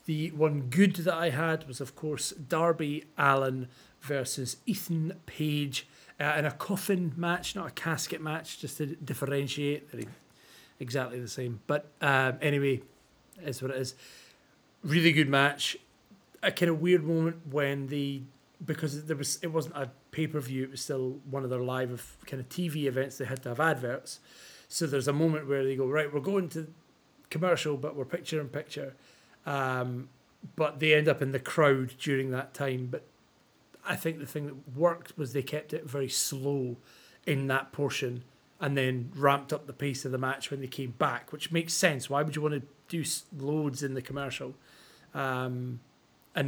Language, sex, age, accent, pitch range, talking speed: English, male, 30-49, British, 135-160 Hz, 180 wpm